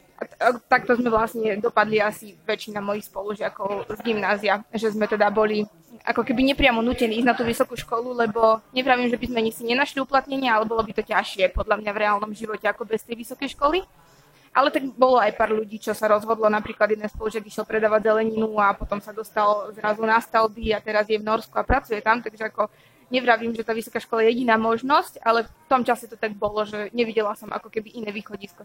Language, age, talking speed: Slovak, 20-39, 215 wpm